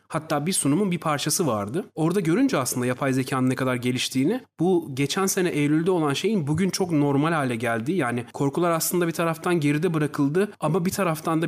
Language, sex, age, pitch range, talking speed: Turkish, male, 40-59, 135-175 Hz, 190 wpm